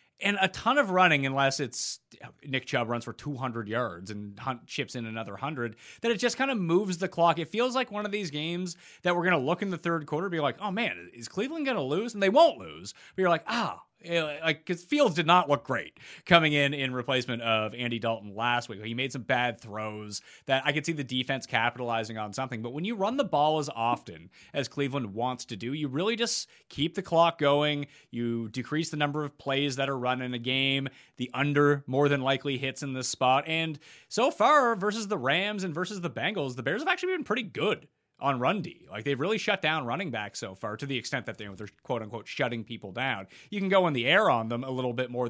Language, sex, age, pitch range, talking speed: English, male, 30-49, 120-175 Hz, 245 wpm